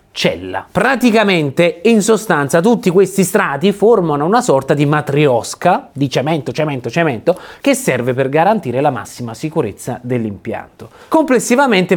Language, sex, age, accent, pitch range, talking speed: Italian, male, 30-49, native, 125-195 Hz, 125 wpm